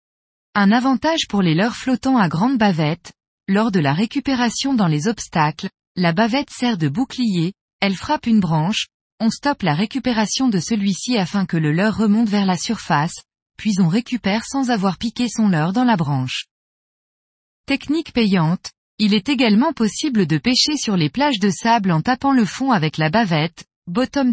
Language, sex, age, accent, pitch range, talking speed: French, female, 20-39, French, 180-245 Hz, 175 wpm